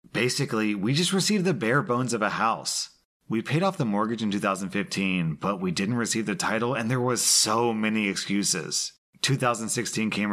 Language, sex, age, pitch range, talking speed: English, male, 30-49, 100-130 Hz, 180 wpm